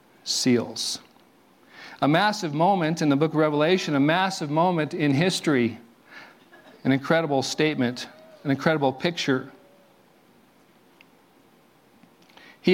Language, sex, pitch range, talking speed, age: English, male, 145-175 Hz, 100 wpm, 40-59